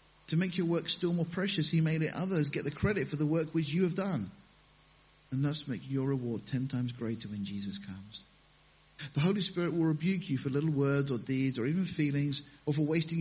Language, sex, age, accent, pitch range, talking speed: English, male, 50-69, British, 140-180 Hz, 225 wpm